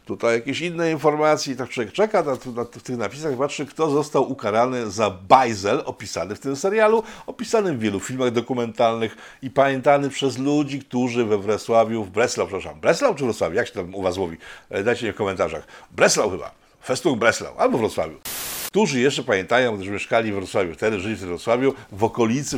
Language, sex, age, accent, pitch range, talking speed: Polish, male, 50-69, native, 105-150 Hz, 185 wpm